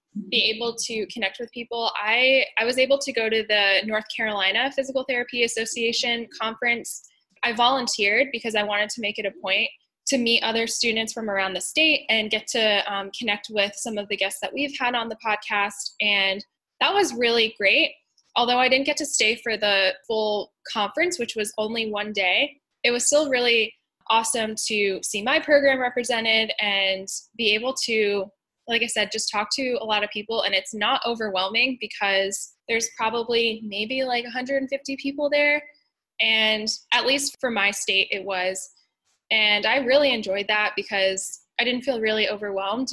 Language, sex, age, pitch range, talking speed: English, female, 10-29, 210-255 Hz, 180 wpm